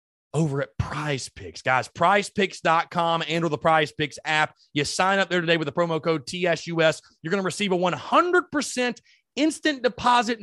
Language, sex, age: English, male, 30-49